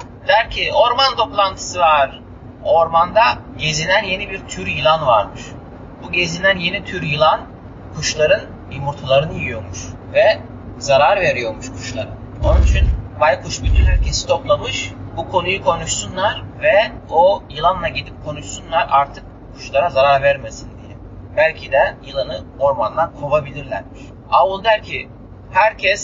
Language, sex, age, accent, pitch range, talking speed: Turkish, male, 30-49, native, 120-180 Hz, 120 wpm